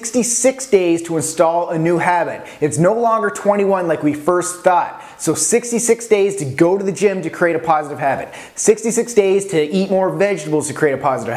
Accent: American